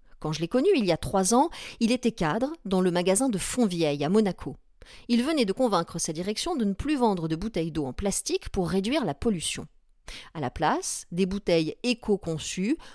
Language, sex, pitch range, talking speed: French, female, 170-240 Hz, 205 wpm